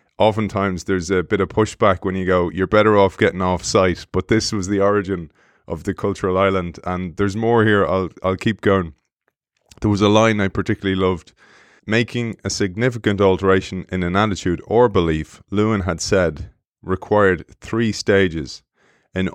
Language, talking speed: English, 170 wpm